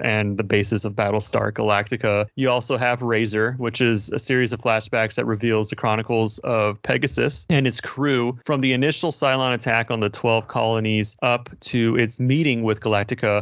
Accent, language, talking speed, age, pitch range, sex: American, English, 180 wpm, 30-49, 110-125 Hz, male